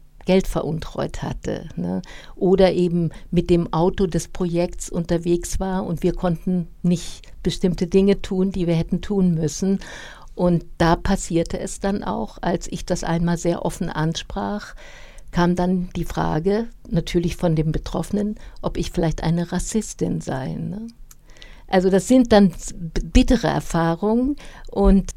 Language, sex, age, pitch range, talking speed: German, female, 60-79, 165-190 Hz, 140 wpm